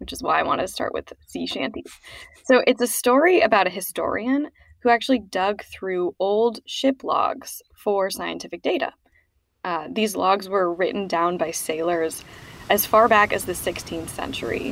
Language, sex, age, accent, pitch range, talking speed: English, female, 10-29, American, 175-235 Hz, 170 wpm